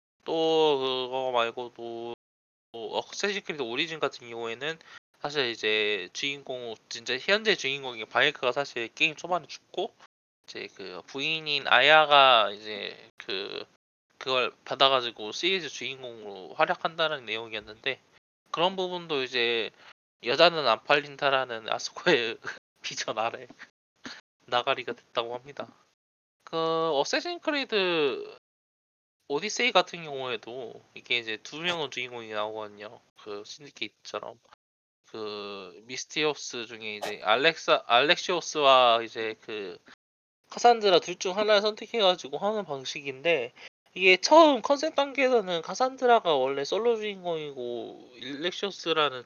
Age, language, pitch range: 20-39, Korean, 120-180 Hz